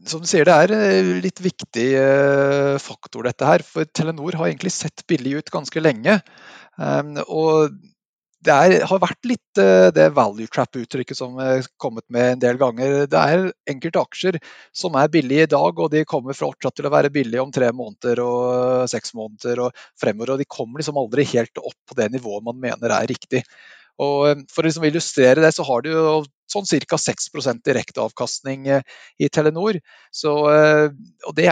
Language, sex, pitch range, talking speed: English, male, 125-155 Hz, 180 wpm